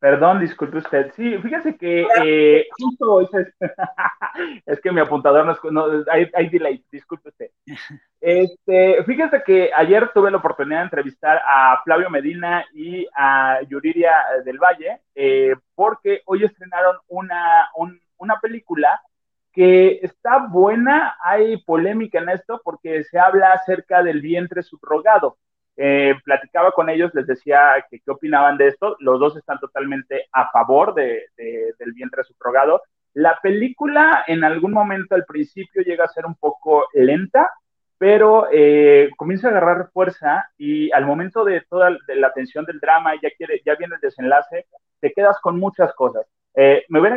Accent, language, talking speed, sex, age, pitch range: Mexican, Spanish, 155 wpm, male, 30-49, 155-225 Hz